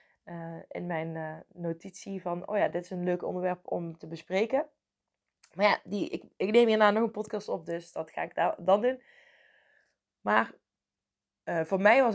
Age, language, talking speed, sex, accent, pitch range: 20-39, Dutch, 195 wpm, female, Dutch, 175-215 Hz